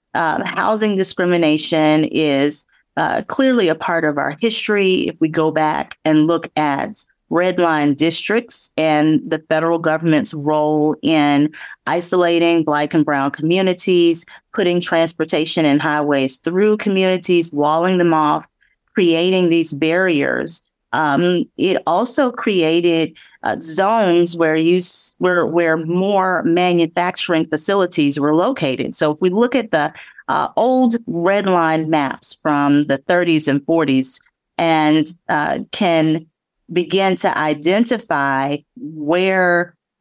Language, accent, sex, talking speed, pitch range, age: English, American, female, 125 wpm, 150-180 Hz, 30-49